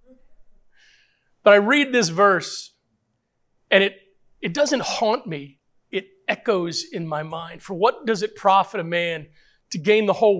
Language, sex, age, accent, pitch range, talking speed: English, male, 40-59, American, 180-240 Hz, 155 wpm